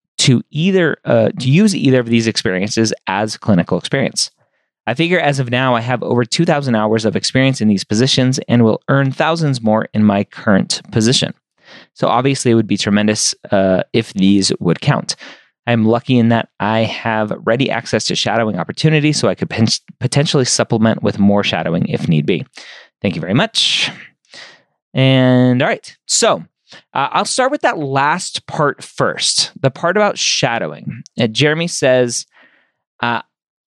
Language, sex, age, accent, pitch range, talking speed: English, male, 30-49, American, 110-150 Hz, 165 wpm